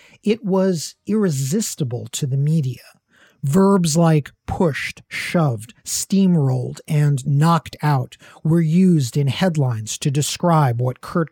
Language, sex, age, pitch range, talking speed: English, male, 50-69, 140-185 Hz, 115 wpm